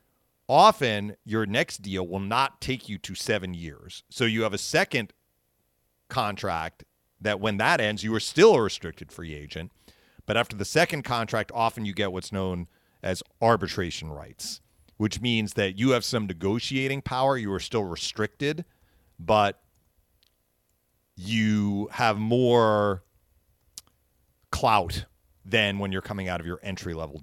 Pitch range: 85-110 Hz